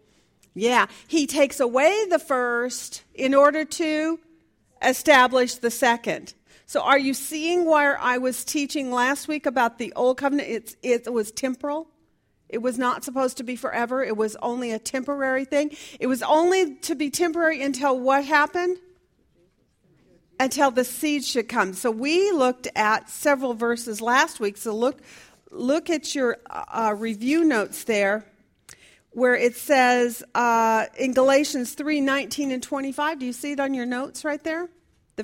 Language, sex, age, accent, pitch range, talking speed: English, female, 40-59, American, 245-300 Hz, 160 wpm